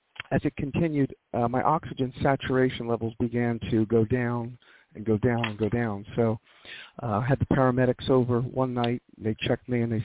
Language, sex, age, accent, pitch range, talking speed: English, male, 50-69, American, 115-130 Hz, 190 wpm